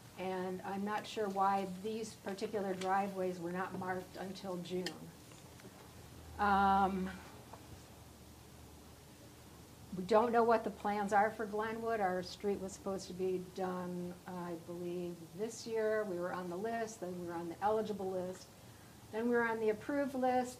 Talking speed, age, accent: 155 wpm, 50-69, American